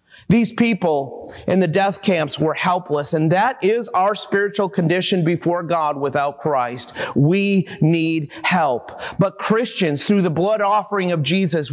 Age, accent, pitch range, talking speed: 40-59, American, 160-215 Hz, 150 wpm